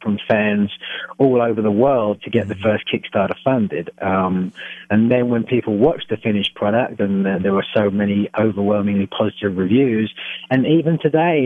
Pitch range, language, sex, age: 105-135 Hz, English, male, 30-49